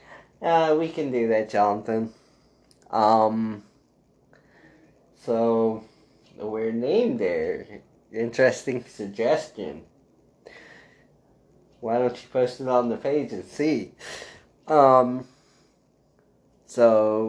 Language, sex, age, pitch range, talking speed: English, male, 20-39, 105-125 Hz, 90 wpm